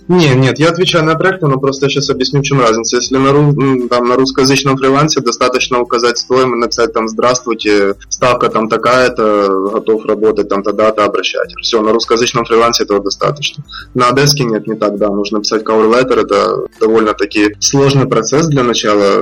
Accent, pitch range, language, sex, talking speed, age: native, 105-130 Hz, Russian, male, 160 wpm, 20-39